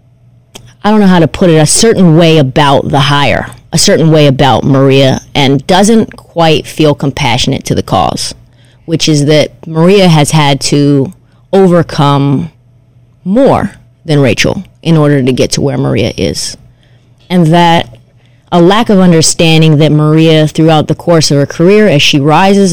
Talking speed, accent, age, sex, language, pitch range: 165 wpm, American, 30-49, female, English, 130-170 Hz